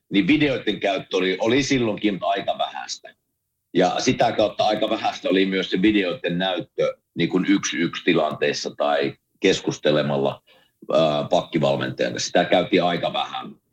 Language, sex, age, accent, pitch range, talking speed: Finnish, male, 50-69, native, 90-120 Hz, 125 wpm